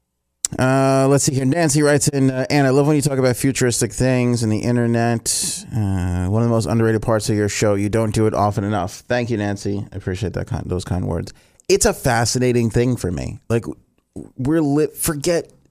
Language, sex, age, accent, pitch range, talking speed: English, male, 30-49, American, 105-130 Hz, 215 wpm